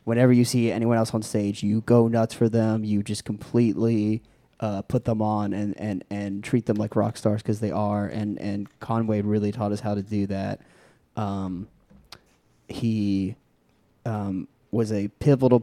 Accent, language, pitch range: American, English, 100-115 Hz